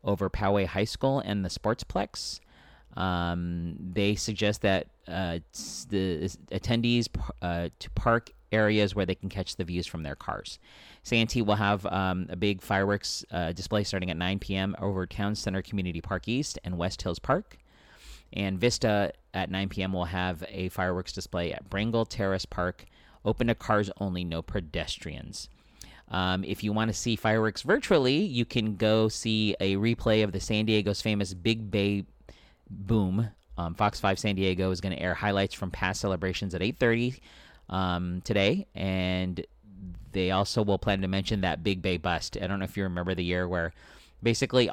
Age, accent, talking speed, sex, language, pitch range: 40-59, American, 175 wpm, male, English, 90-105 Hz